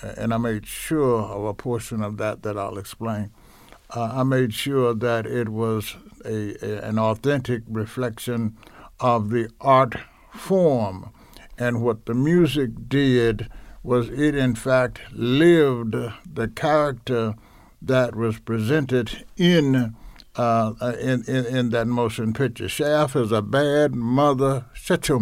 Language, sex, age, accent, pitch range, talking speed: English, male, 60-79, American, 115-135 Hz, 140 wpm